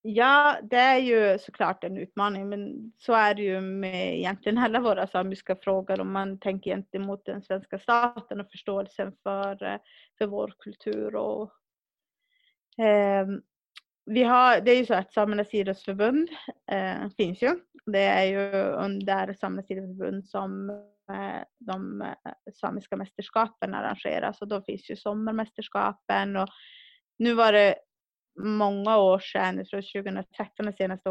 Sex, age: female, 30-49